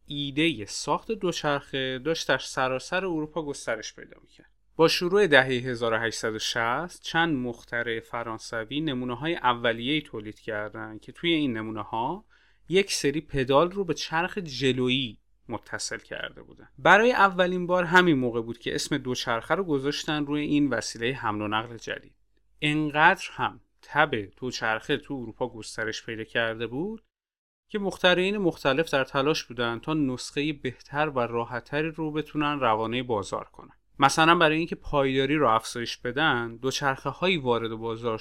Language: Persian